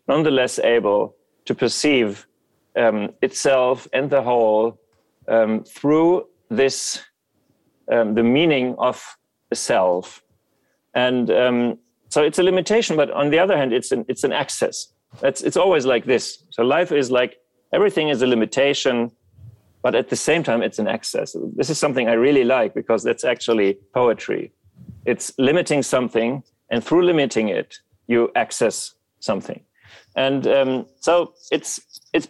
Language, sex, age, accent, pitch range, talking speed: Czech, male, 40-59, German, 110-140 Hz, 150 wpm